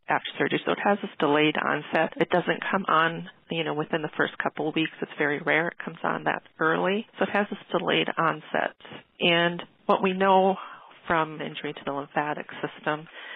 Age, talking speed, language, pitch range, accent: 40-59, 200 wpm, English, 150-190 Hz, American